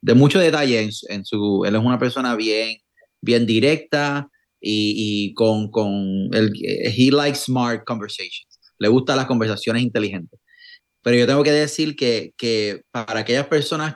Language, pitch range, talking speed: English, 120-160 Hz, 165 wpm